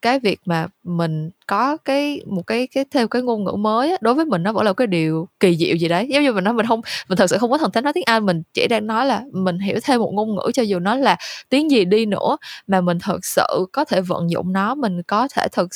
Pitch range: 180-245 Hz